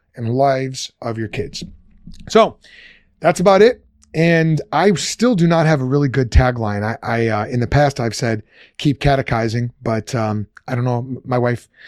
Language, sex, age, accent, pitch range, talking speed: English, male, 30-49, American, 120-155 Hz, 180 wpm